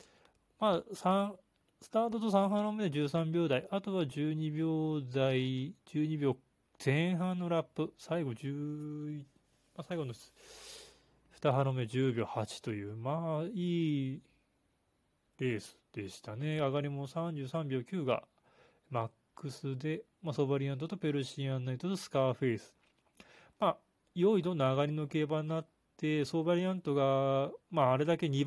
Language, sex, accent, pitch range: Japanese, male, native, 135-170 Hz